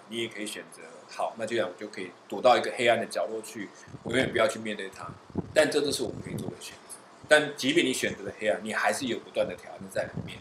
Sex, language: male, Chinese